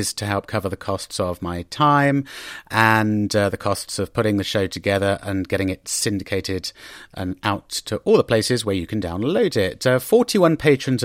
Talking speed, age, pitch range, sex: 190 wpm, 40-59, 105-135 Hz, male